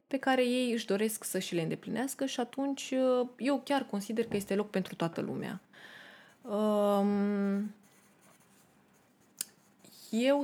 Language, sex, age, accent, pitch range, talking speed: Romanian, female, 20-39, native, 190-240 Hz, 120 wpm